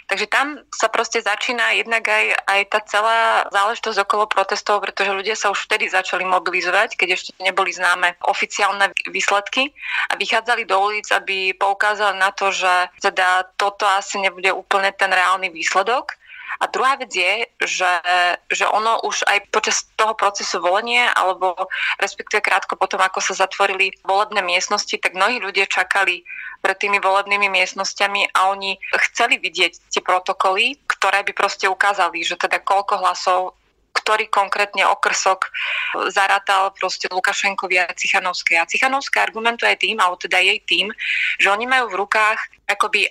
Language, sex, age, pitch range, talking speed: Slovak, female, 20-39, 185-210 Hz, 155 wpm